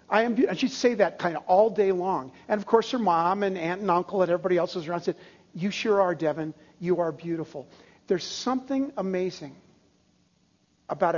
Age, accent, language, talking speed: 50-69, American, English, 185 wpm